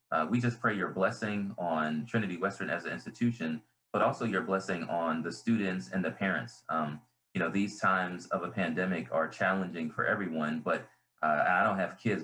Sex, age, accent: male, 30-49, American